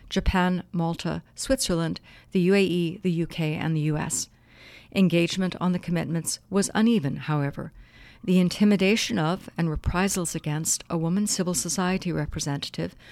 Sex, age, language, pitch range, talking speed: female, 60-79, English, 160-190 Hz, 130 wpm